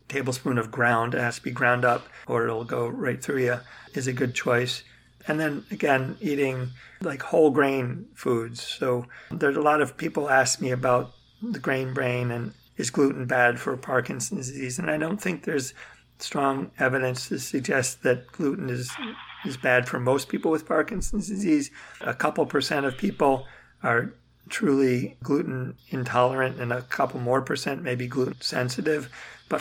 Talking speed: 170 wpm